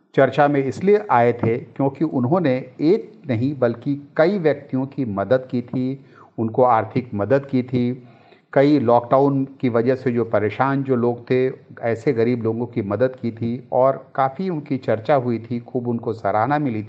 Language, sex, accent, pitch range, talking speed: Hindi, male, native, 115-135 Hz, 170 wpm